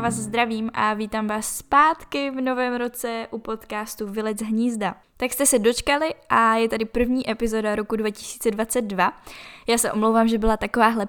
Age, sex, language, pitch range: 10-29, female, Czech, 215-245 Hz